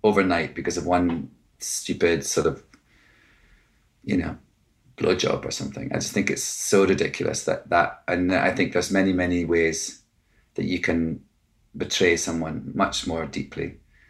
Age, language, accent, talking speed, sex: 30-49, English, British, 150 wpm, male